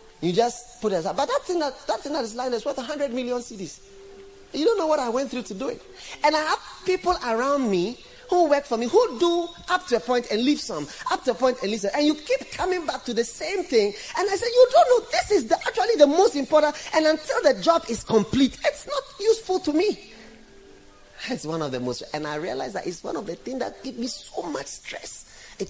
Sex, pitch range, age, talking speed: male, 230-345 Hz, 30-49, 245 wpm